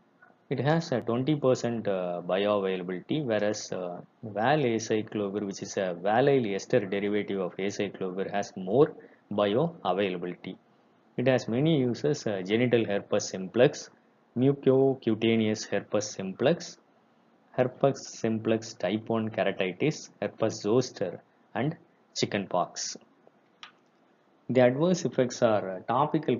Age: 20-39